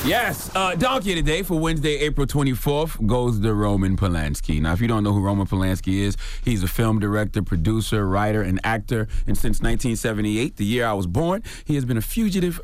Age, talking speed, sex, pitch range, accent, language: 30-49, 200 wpm, male, 95-120 Hz, American, English